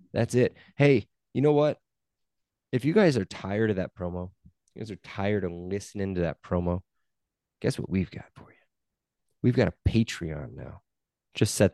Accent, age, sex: American, 20-39, male